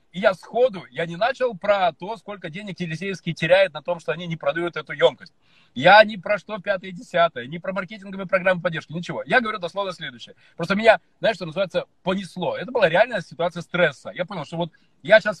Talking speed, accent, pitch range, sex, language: 210 wpm, native, 170-220 Hz, male, Russian